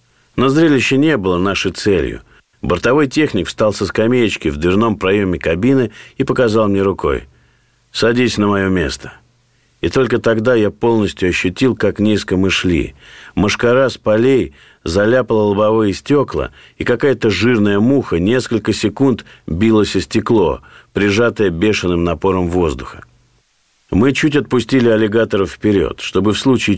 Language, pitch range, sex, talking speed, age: Russian, 95-120 Hz, male, 135 wpm, 50-69